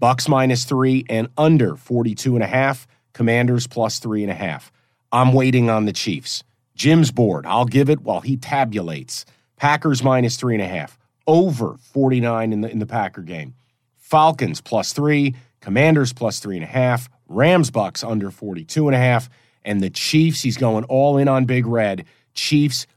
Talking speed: 180 wpm